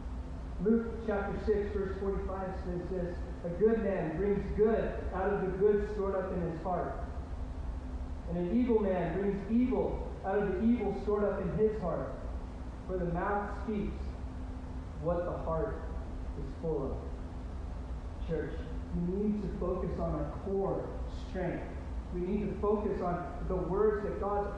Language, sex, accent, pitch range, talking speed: English, male, American, 170-240 Hz, 155 wpm